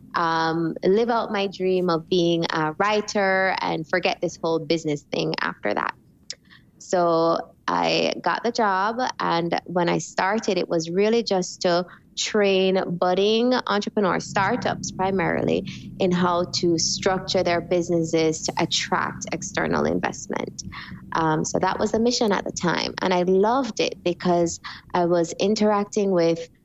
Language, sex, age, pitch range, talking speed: English, female, 20-39, 170-200 Hz, 145 wpm